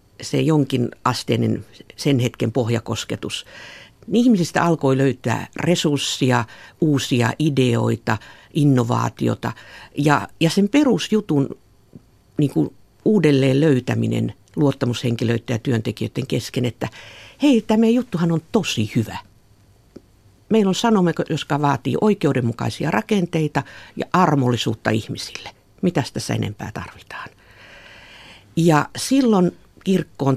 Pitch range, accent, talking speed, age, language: 115-150 Hz, native, 95 wpm, 50-69, Finnish